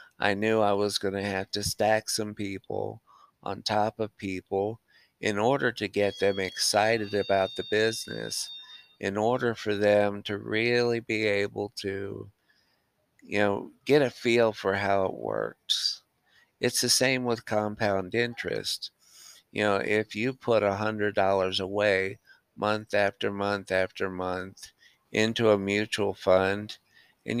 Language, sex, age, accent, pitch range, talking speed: English, male, 50-69, American, 95-110 Hz, 140 wpm